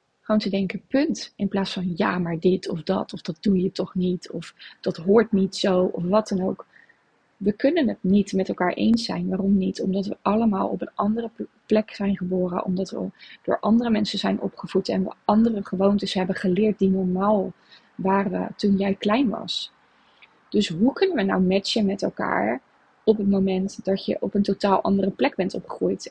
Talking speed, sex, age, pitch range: 200 wpm, female, 20-39, 190-215 Hz